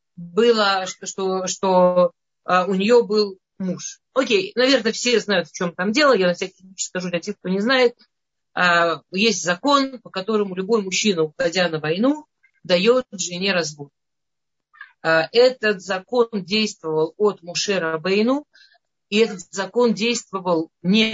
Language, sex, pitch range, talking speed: Russian, female, 175-230 Hz, 140 wpm